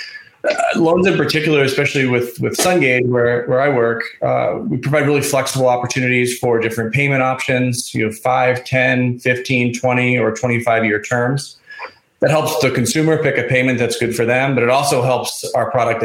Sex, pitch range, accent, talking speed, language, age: male, 120-145 Hz, American, 180 wpm, English, 30-49